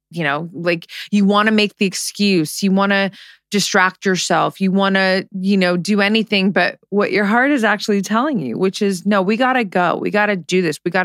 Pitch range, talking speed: 165-210 Hz, 235 wpm